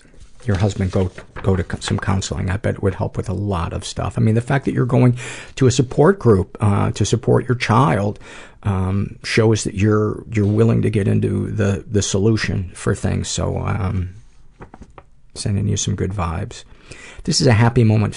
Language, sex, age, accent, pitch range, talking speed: English, male, 50-69, American, 95-115 Hz, 195 wpm